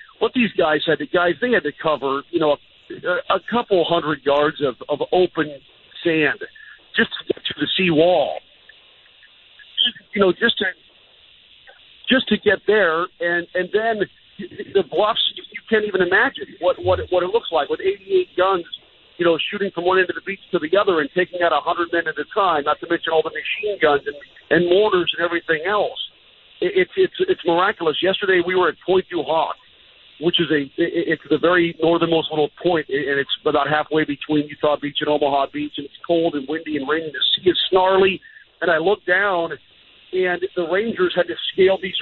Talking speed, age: 195 wpm, 50-69